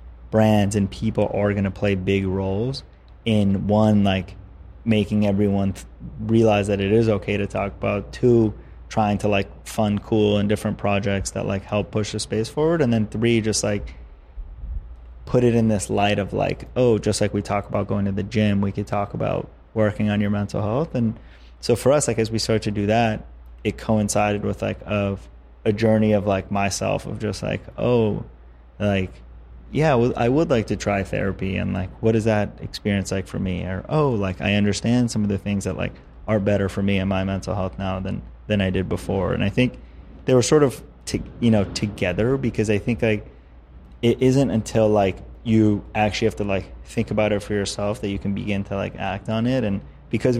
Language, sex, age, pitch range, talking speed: English, male, 20-39, 95-110 Hz, 210 wpm